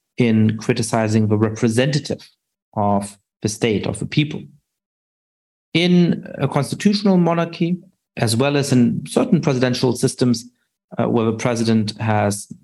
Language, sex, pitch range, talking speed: English, male, 110-155 Hz, 125 wpm